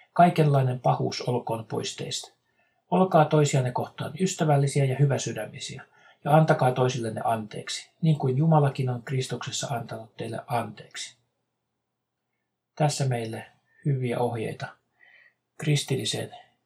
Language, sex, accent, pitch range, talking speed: Finnish, male, native, 120-150 Hz, 100 wpm